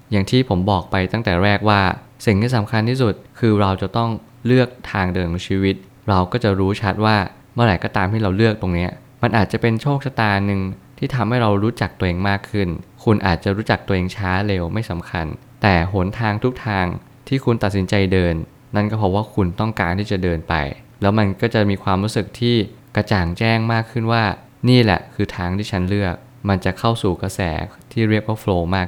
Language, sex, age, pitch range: Thai, male, 20-39, 95-115 Hz